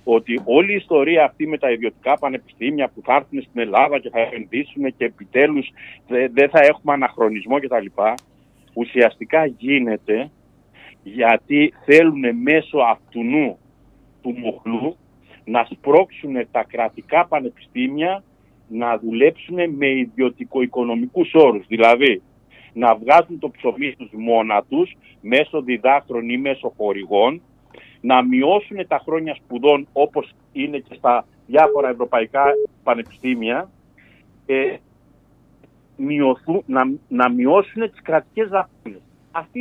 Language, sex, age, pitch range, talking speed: Greek, male, 50-69, 120-165 Hz, 120 wpm